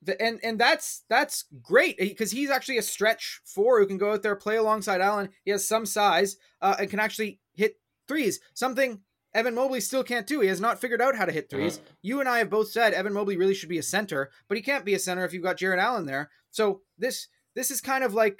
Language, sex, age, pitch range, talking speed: English, male, 20-39, 150-215 Hz, 250 wpm